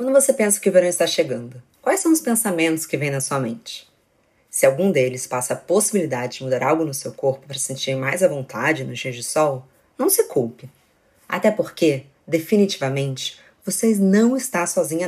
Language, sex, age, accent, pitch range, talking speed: Portuguese, female, 20-39, Brazilian, 135-195 Hz, 195 wpm